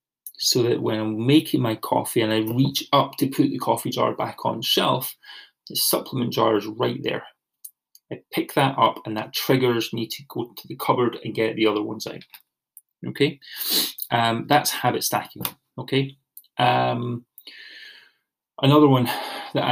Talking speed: 165 wpm